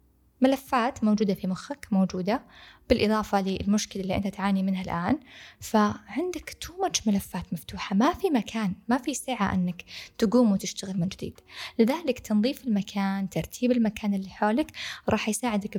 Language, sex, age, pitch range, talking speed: Arabic, female, 10-29, 195-245 Hz, 135 wpm